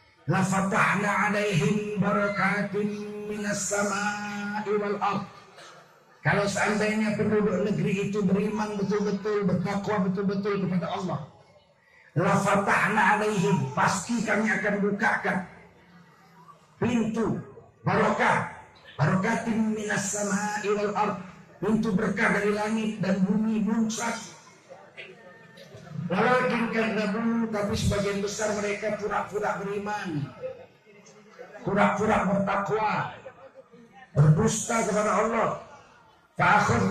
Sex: male